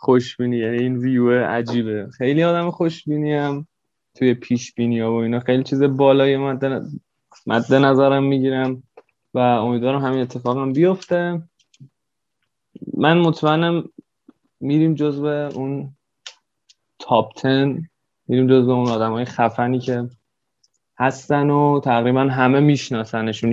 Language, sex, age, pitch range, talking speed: Persian, male, 20-39, 120-140 Hz, 110 wpm